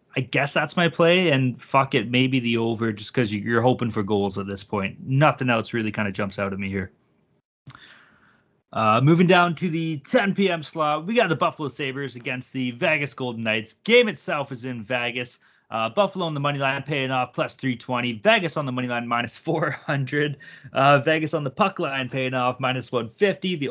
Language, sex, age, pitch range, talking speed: English, male, 20-39, 120-160 Hz, 205 wpm